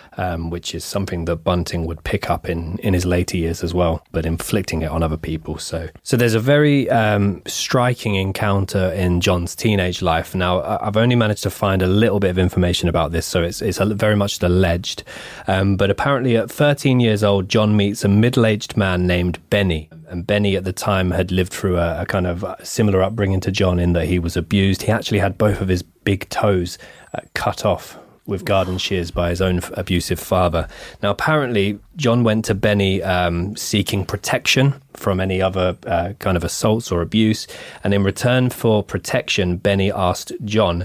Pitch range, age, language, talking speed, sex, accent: 85-105 Hz, 20-39, English, 195 wpm, male, British